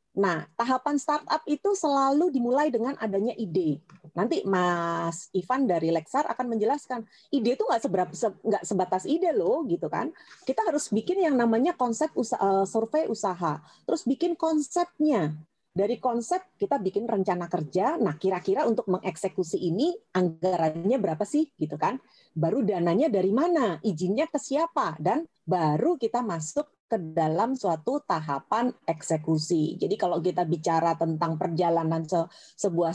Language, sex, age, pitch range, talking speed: Indonesian, female, 30-49, 185-280 Hz, 135 wpm